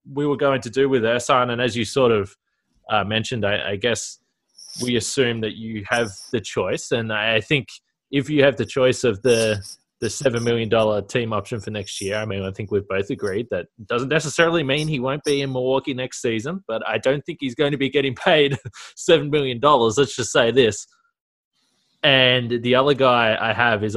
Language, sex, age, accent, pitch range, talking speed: English, male, 20-39, Australian, 110-145 Hz, 210 wpm